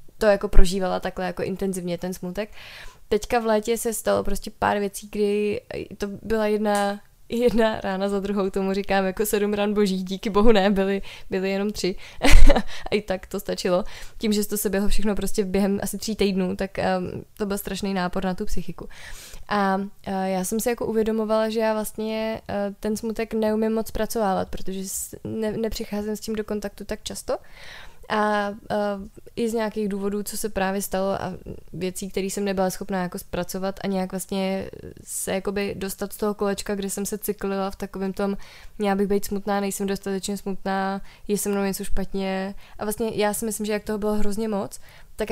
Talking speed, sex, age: 190 wpm, female, 20-39